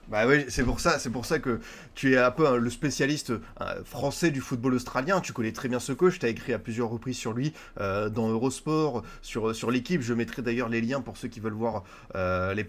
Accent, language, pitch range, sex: French, French, 115-145 Hz, male